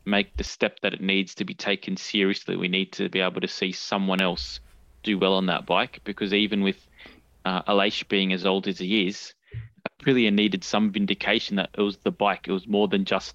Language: English